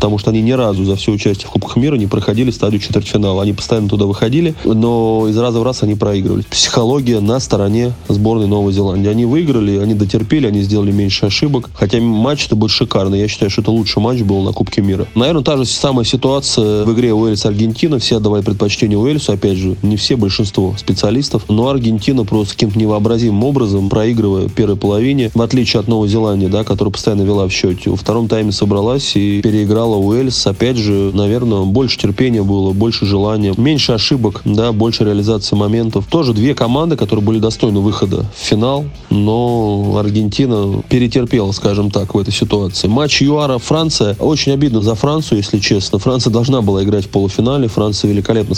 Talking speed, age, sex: 180 wpm, 20-39, male